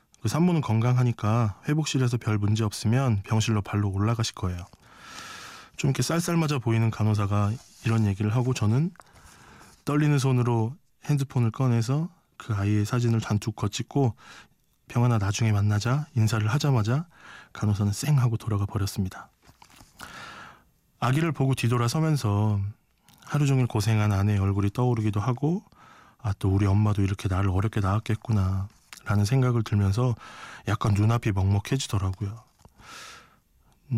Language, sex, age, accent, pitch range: Korean, male, 20-39, native, 105-130 Hz